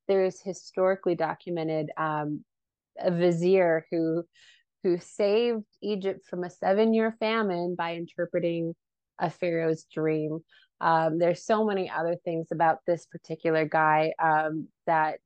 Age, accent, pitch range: 20-39, American, 160-195 Hz